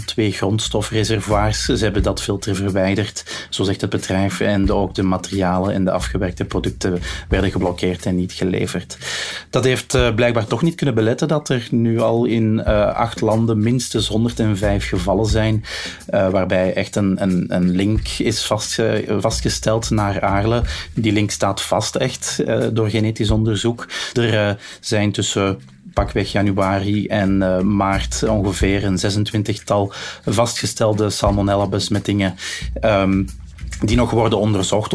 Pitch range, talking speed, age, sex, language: 95-110 Hz, 130 wpm, 30-49, male, Dutch